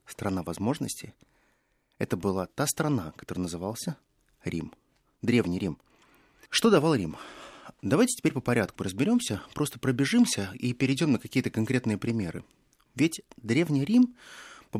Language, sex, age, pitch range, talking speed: Russian, male, 30-49, 110-155 Hz, 125 wpm